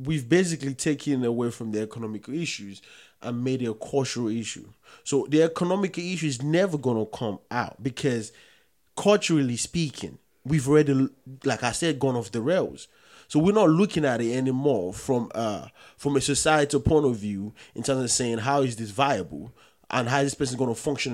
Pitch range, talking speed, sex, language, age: 125-160 Hz, 185 wpm, male, English, 30-49